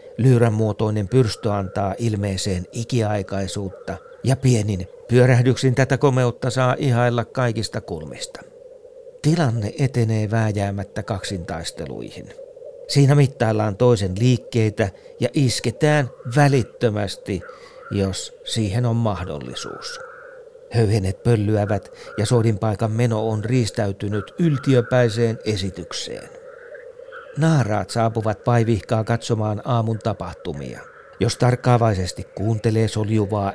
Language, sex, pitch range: Finnish, male, 110-155 Hz